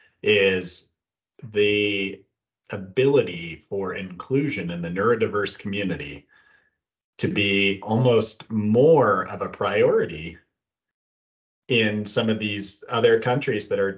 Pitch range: 100-130 Hz